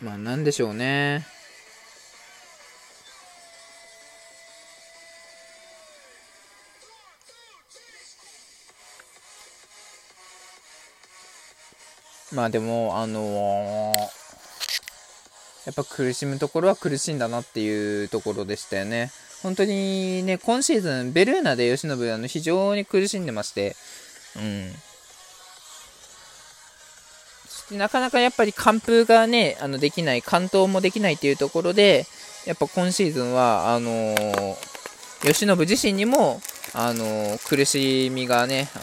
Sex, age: male, 20-39